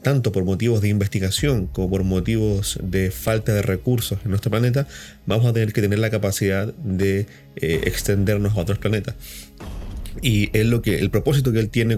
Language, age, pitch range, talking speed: Spanish, 30-49, 95-120 Hz, 185 wpm